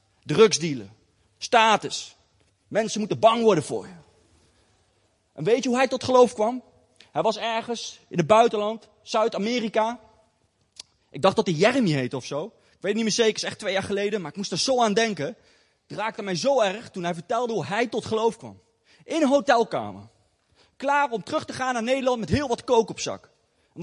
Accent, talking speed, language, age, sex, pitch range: Dutch, 200 wpm, Dutch, 30-49, male, 160-255 Hz